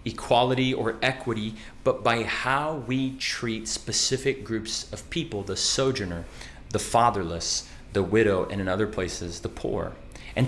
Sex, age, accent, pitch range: male, 30-49, American, 95-125 Hz